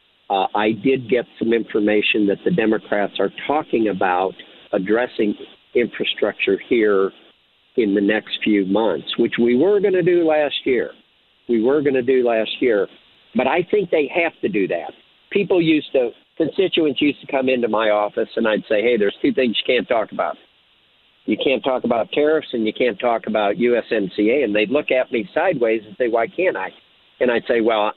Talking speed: 195 wpm